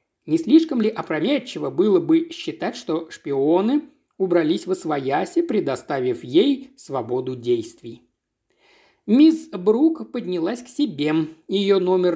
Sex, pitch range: male, 170-270 Hz